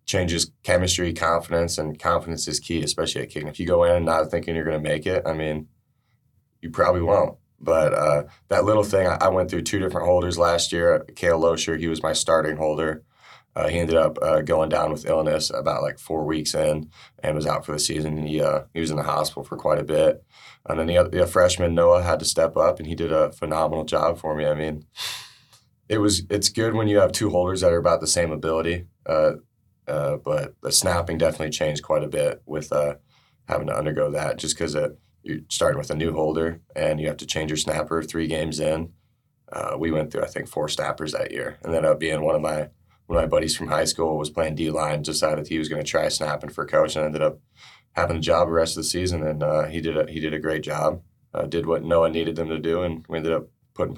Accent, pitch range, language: American, 75-85 Hz, English